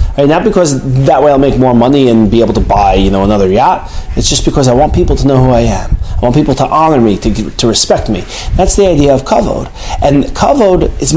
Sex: male